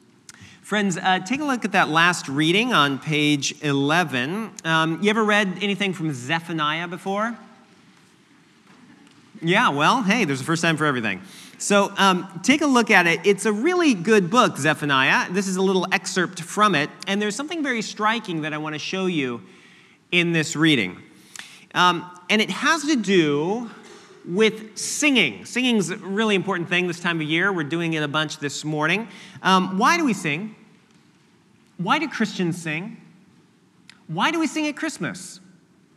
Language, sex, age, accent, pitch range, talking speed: English, male, 40-59, American, 165-215 Hz, 170 wpm